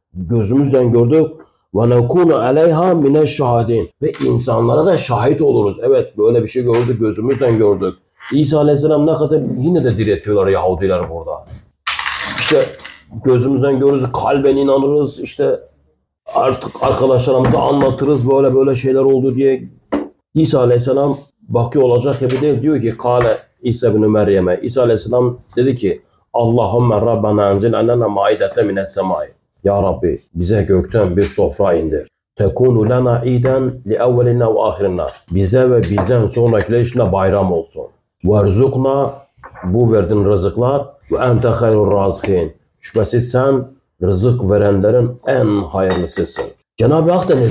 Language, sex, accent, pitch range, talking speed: Turkish, male, native, 110-135 Hz, 130 wpm